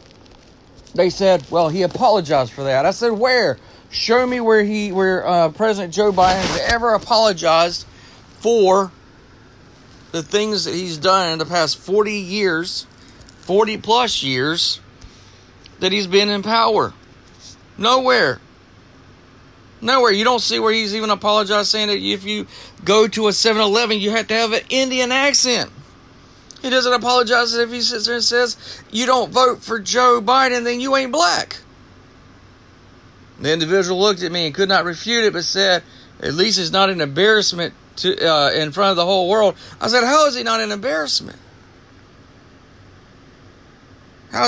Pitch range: 155-225 Hz